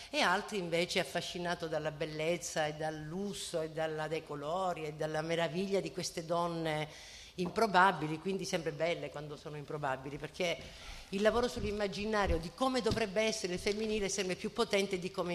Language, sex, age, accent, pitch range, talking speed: Italian, female, 50-69, native, 165-205 Hz, 155 wpm